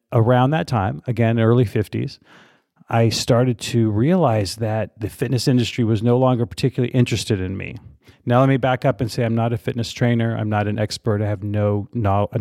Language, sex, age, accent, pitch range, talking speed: English, male, 40-59, American, 110-135 Hz, 200 wpm